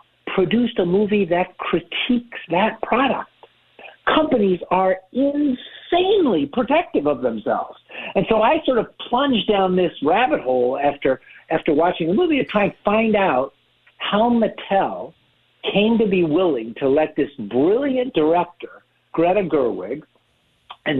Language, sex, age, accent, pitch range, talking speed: English, male, 60-79, American, 145-235 Hz, 135 wpm